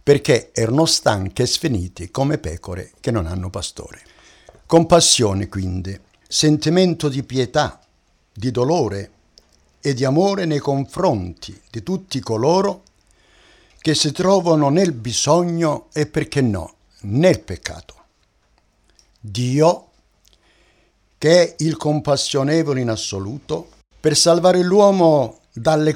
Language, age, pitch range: Italian, 60-79, 110-165 Hz